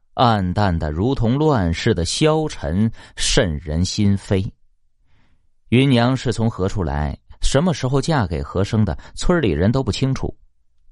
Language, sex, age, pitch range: Chinese, male, 30-49, 85-120 Hz